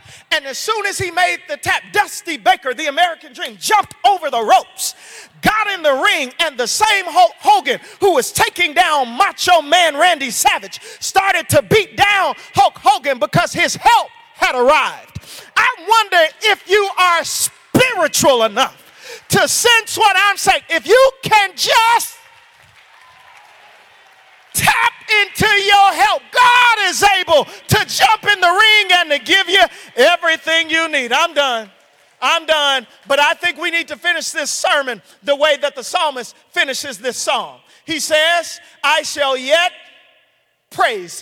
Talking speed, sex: 155 wpm, male